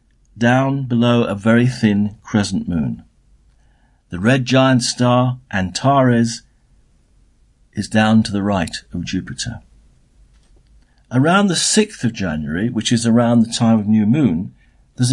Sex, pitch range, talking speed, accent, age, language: male, 105-130 Hz, 130 wpm, British, 50-69, English